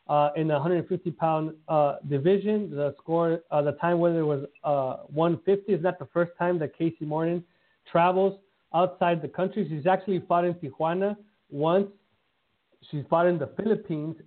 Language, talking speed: English, 170 wpm